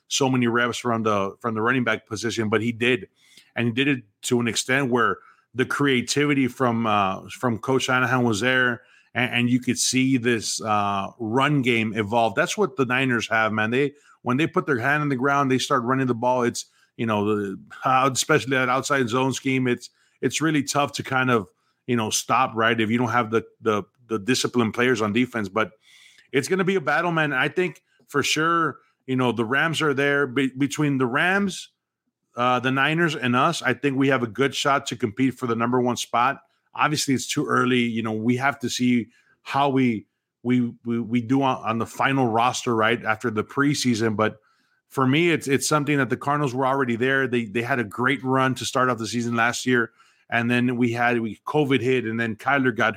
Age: 30-49